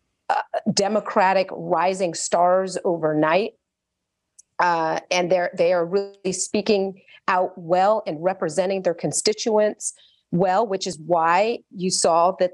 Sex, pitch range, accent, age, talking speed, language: female, 180-215 Hz, American, 40-59, 120 wpm, English